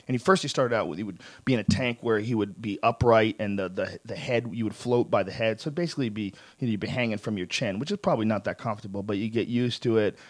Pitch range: 105-135 Hz